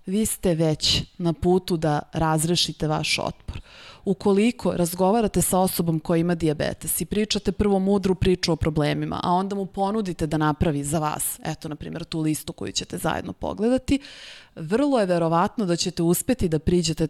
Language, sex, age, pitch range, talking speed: Slovak, female, 20-39, 160-195 Hz, 170 wpm